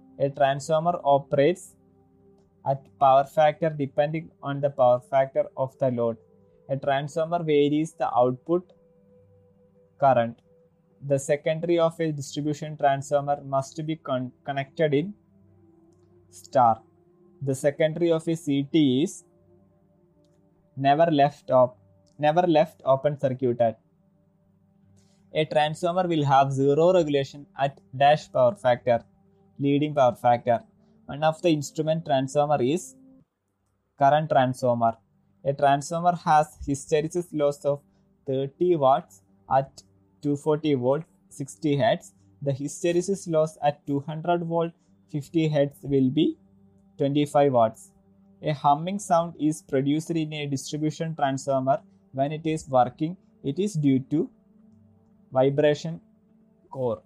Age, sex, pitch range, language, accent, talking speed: 20-39, male, 135-165 Hz, Malayalam, native, 115 wpm